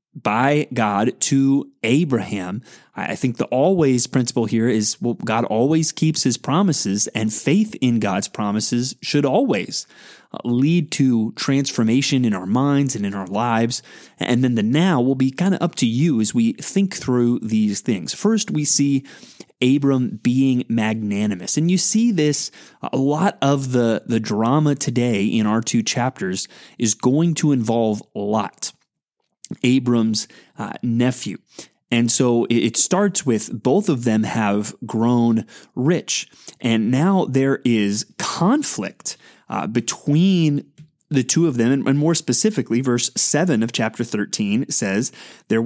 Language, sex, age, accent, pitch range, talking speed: English, male, 30-49, American, 115-155 Hz, 145 wpm